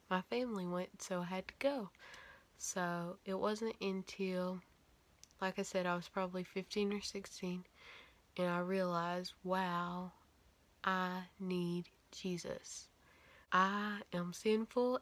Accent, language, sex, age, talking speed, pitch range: American, English, female, 20-39, 125 wpm, 180-200 Hz